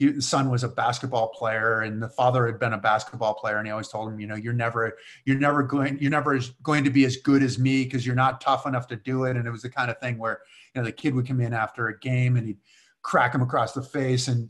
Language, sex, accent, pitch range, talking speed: English, male, American, 115-135 Hz, 285 wpm